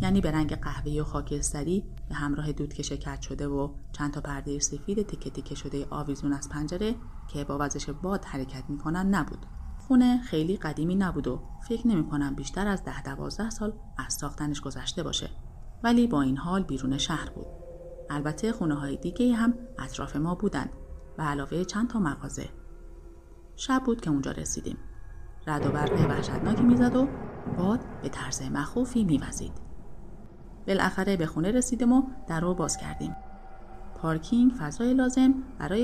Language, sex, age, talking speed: Persian, female, 30-49, 155 wpm